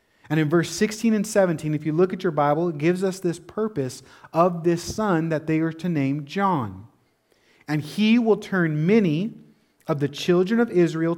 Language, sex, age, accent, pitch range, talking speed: English, male, 30-49, American, 140-185 Hz, 195 wpm